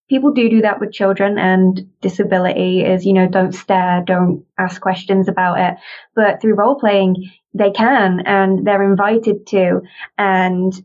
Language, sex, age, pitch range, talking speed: English, female, 20-39, 185-210 Hz, 160 wpm